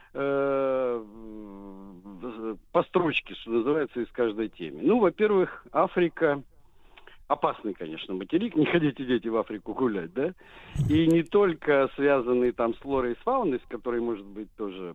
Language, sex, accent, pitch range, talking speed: Russian, male, native, 110-155 Hz, 140 wpm